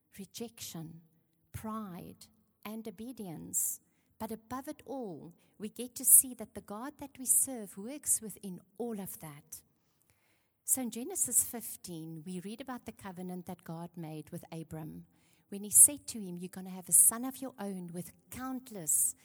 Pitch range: 165-225 Hz